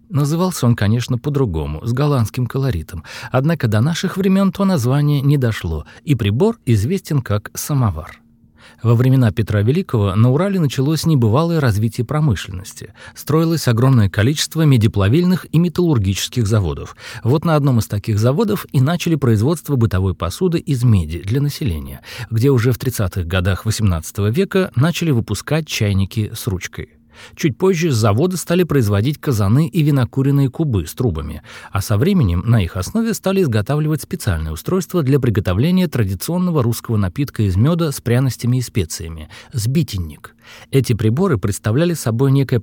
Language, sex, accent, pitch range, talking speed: Russian, male, native, 105-155 Hz, 145 wpm